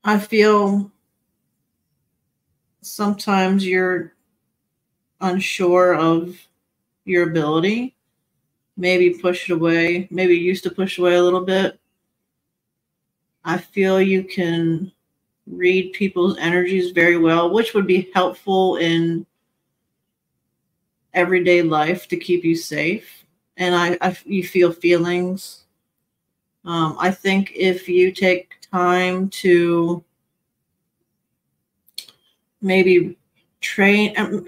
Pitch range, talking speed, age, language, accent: 175-200 Hz, 100 wpm, 40-59, English, American